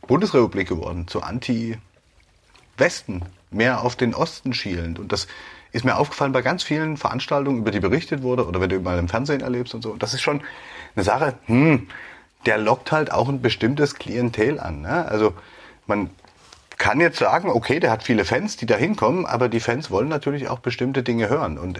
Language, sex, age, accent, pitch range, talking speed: German, male, 30-49, German, 100-135 Hz, 190 wpm